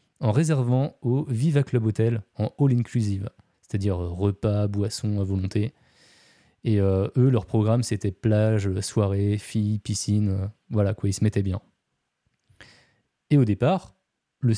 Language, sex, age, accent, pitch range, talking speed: French, male, 20-39, French, 105-135 Hz, 130 wpm